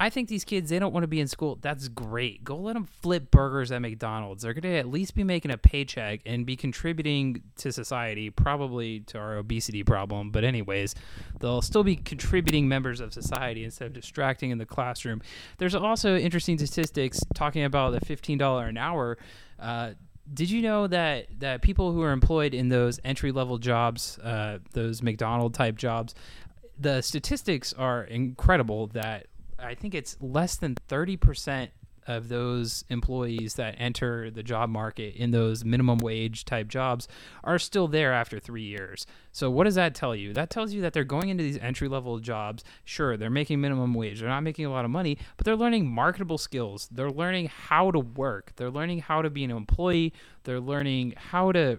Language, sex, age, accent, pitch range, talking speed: English, male, 20-39, American, 115-155 Hz, 190 wpm